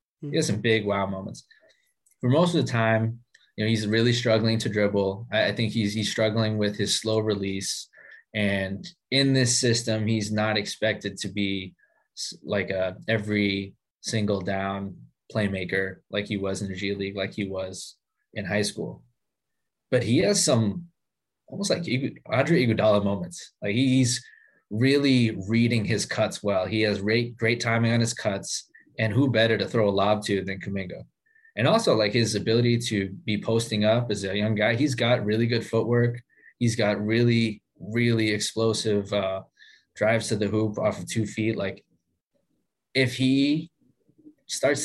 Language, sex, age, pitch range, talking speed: English, male, 20-39, 100-120 Hz, 170 wpm